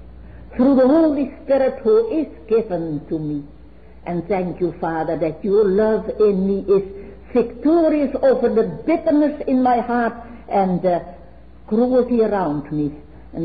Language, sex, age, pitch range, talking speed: English, female, 60-79, 160-250 Hz, 145 wpm